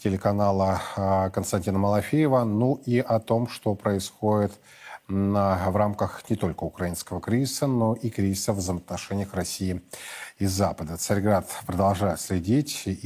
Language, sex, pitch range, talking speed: Russian, male, 100-120 Hz, 130 wpm